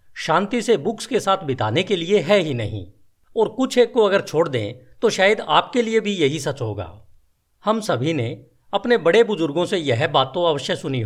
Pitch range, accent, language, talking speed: 120-195 Hz, native, Hindi, 205 wpm